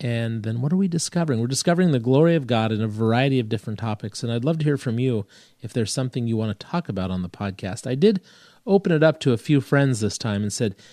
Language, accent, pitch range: English, American, 110-155 Hz